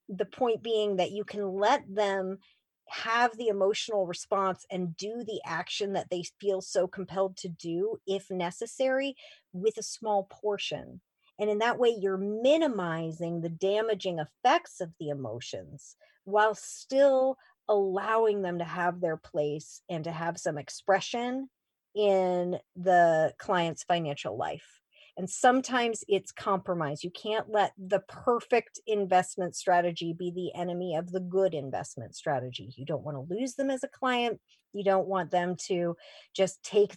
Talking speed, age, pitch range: 155 wpm, 40-59, 175-220 Hz